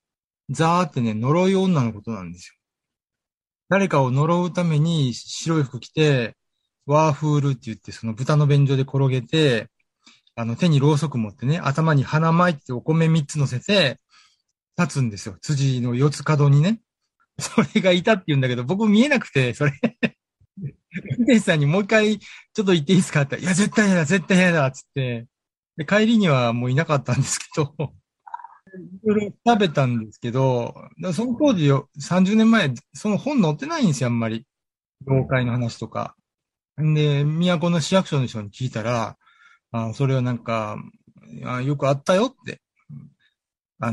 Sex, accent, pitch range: male, native, 120-180 Hz